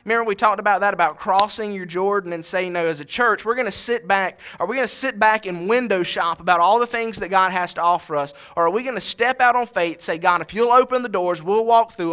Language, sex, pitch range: English, male, 175-230 Hz